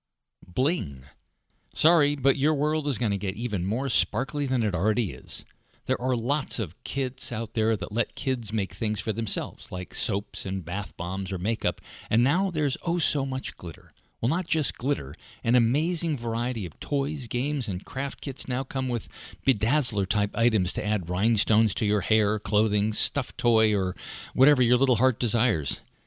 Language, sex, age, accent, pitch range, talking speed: English, male, 50-69, American, 100-135 Hz, 180 wpm